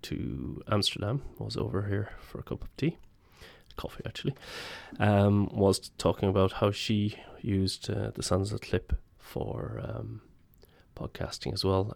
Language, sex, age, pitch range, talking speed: English, male, 20-39, 95-115 Hz, 140 wpm